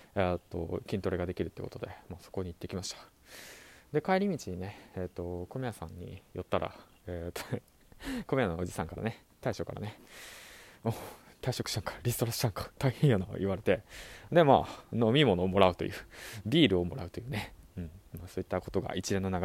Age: 20-39